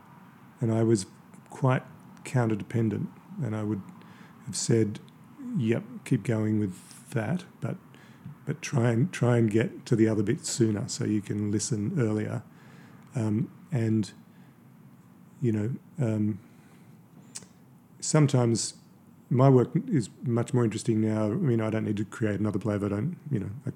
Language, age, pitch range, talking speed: English, 40-59, 105-125 Hz, 155 wpm